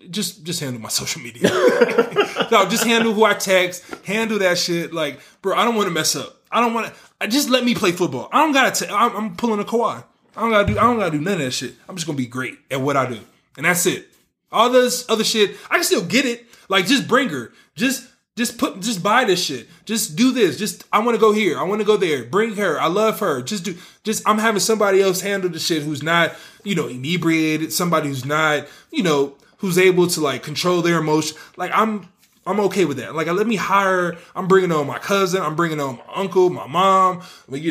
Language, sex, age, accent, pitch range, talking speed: English, male, 20-39, American, 155-215 Hz, 250 wpm